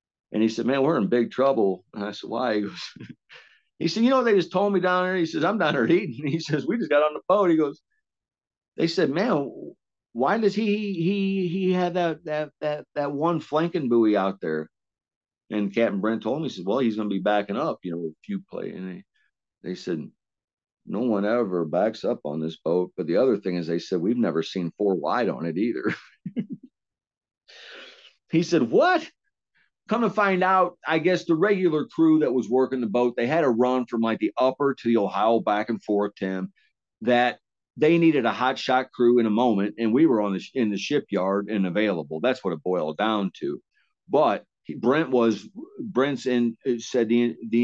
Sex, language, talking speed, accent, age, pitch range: male, English, 215 wpm, American, 50-69, 105-160 Hz